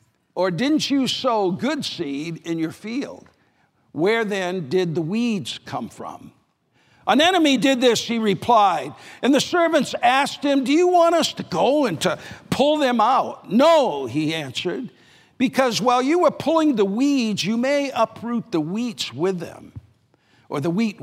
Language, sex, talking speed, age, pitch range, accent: English, male, 165 wpm, 50-69, 165-245 Hz, American